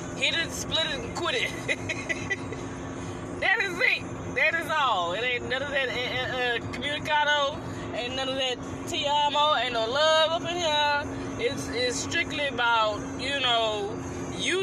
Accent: American